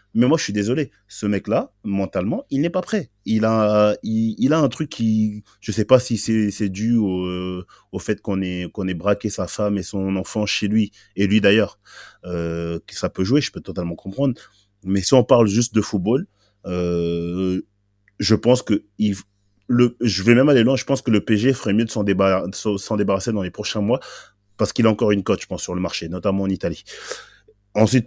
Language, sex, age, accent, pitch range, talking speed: French, male, 30-49, French, 95-110 Hz, 220 wpm